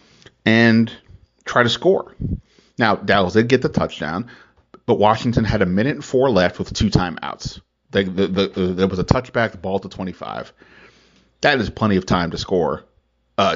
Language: English